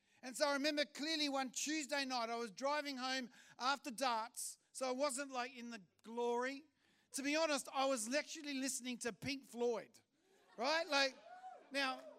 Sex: male